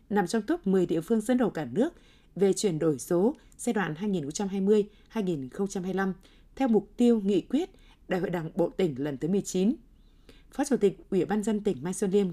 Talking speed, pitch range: 195 wpm, 175-225 Hz